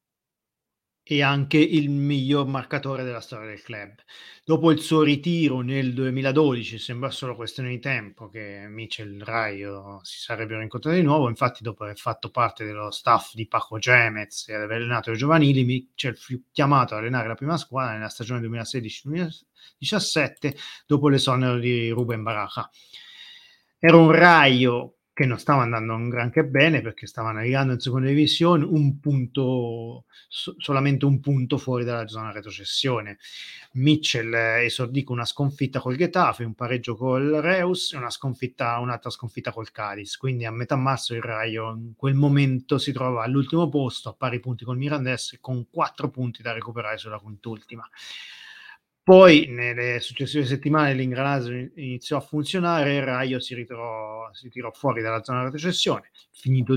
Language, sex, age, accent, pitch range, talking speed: Italian, male, 30-49, native, 115-145 Hz, 155 wpm